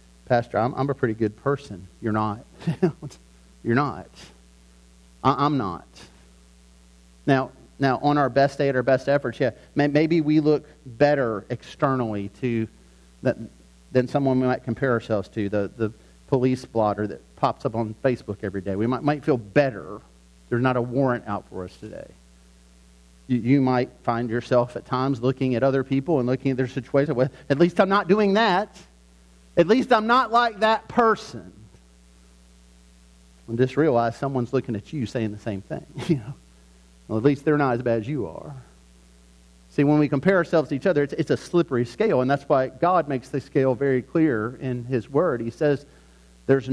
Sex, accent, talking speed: male, American, 185 wpm